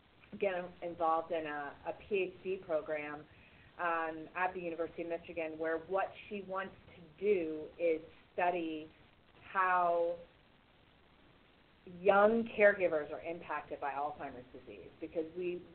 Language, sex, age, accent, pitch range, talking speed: English, female, 30-49, American, 155-180 Hz, 120 wpm